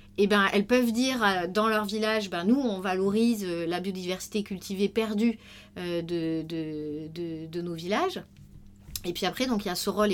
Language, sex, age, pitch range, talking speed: French, female, 40-59, 185-230 Hz, 185 wpm